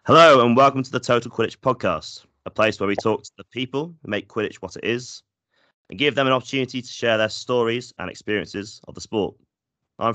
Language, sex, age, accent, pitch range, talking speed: English, male, 30-49, British, 90-125 Hz, 220 wpm